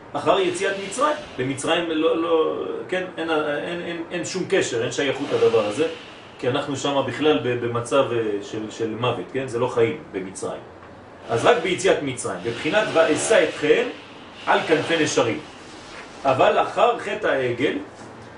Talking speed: 145 wpm